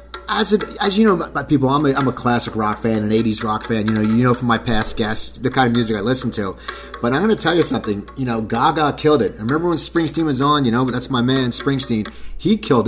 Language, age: English, 30-49